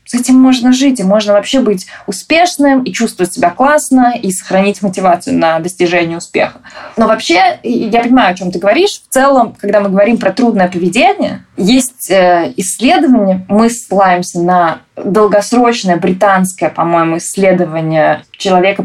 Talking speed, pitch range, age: 145 wpm, 180-250 Hz, 20-39